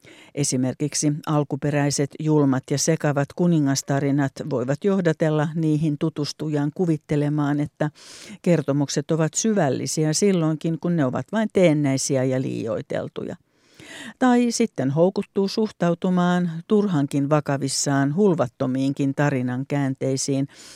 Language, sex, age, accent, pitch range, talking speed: English, female, 60-79, Finnish, 140-175 Hz, 95 wpm